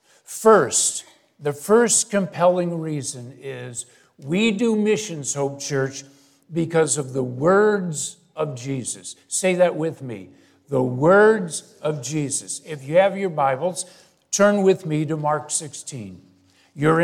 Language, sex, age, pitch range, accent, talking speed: English, male, 50-69, 145-190 Hz, American, 130 wpm